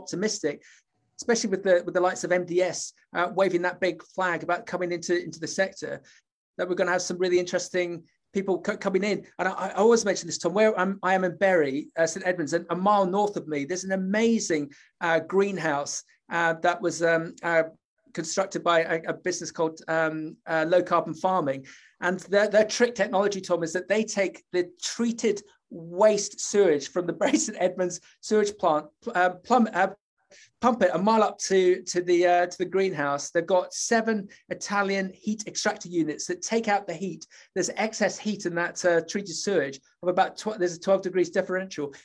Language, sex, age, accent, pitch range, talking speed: English, male, 30-49, British, 175-200 Hz, 200 wpm